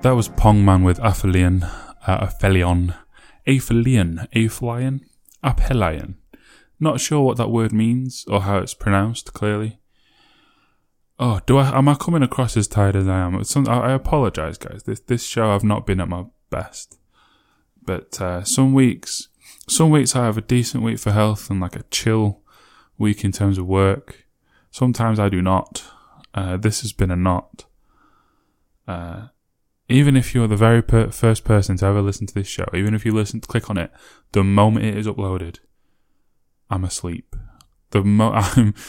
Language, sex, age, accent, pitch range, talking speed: English, male, 10-29, British, 95-120 Hz, 170 wpm